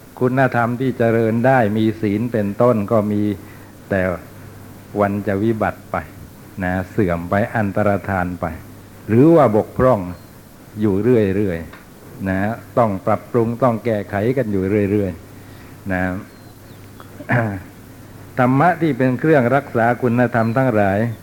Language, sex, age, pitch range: Thai, male, 60-79, 100-125 Hz